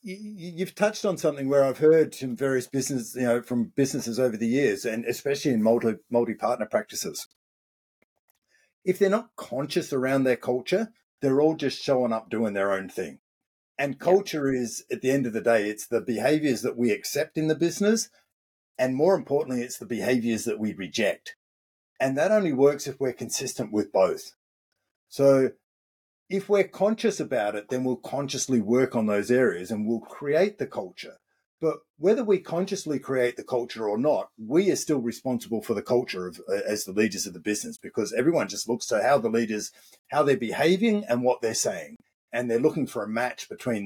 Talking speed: 190 wpm